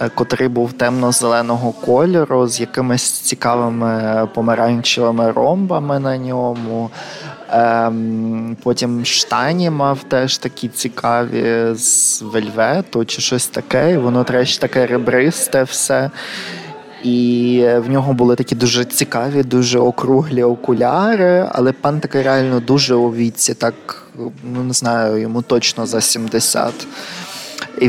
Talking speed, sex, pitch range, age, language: 120 wpm, male, 120-135 Hz, 20-39, Ukrainian